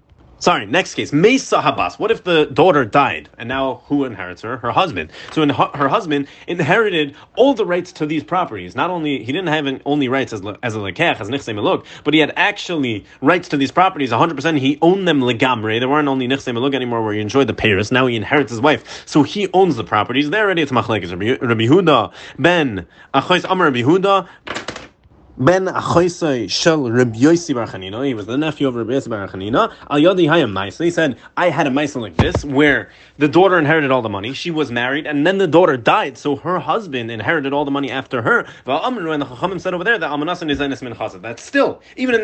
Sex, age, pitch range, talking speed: male, 30-49, 125-170 Hz, 200 wpm